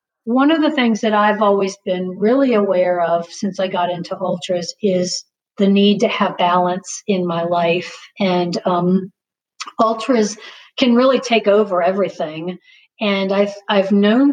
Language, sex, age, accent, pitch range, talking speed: English, female, 50-69, American, 185-235 Hz, 155 wpm